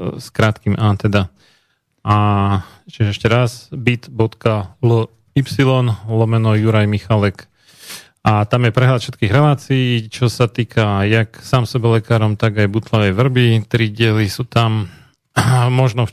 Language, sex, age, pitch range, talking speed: Slovak, male, 40-59, 105-125 Hz, 130 wpm